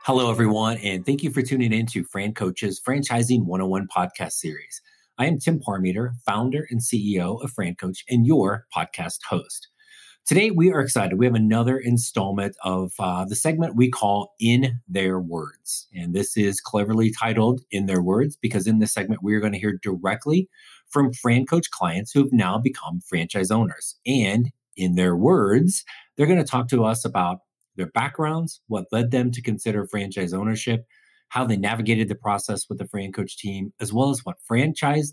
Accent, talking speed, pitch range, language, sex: American, 180 wpm, 95-130 Hz, English, male